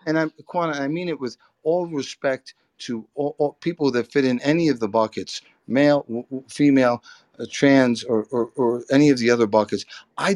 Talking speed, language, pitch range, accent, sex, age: 155 wpm, English, 115-155 Hz, American, male, 50-69